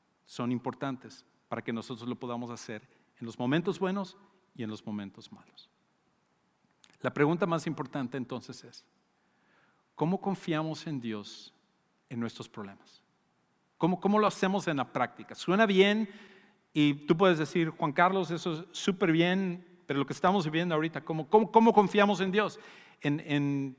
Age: 50-69